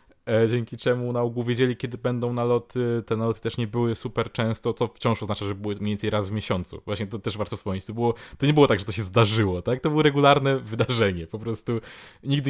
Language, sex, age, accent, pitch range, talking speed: Polish, male, 20-39, native, 110-125 Hz, 230 wpm